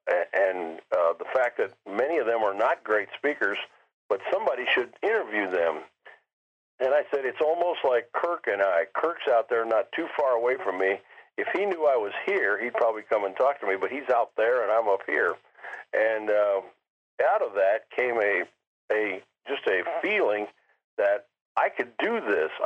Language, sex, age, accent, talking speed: English, male, 50-69, American, 190 wpm